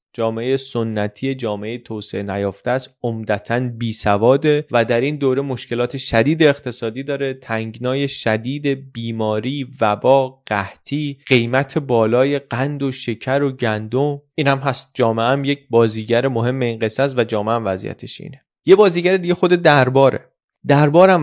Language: Persian